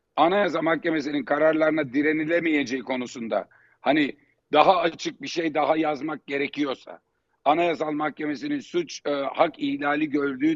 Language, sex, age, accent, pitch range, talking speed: Turkish, male, 50-69, native, 145-190 Hz, 115 wpm